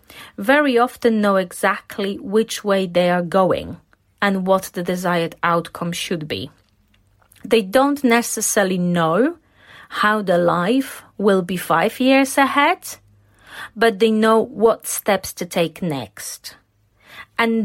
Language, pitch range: English, 185-250 Hz